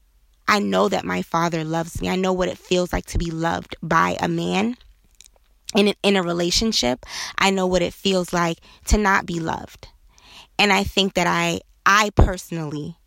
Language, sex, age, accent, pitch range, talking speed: English, female, 20-39, American, 165-200 Hz, 190 wpm